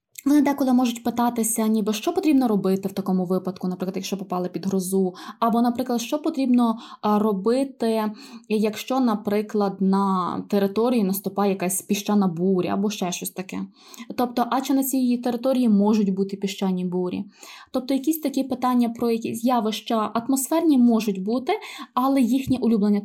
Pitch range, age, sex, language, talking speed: 200-250 Hz, 20-39, female, Ukrainian, 145 wpm